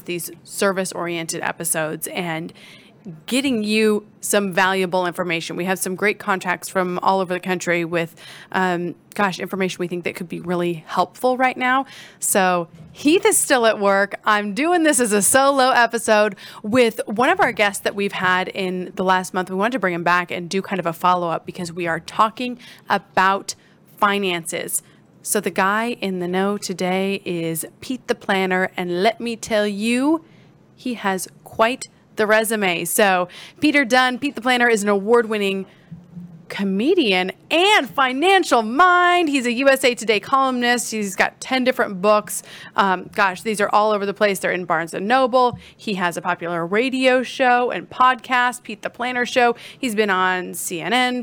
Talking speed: 175 wpm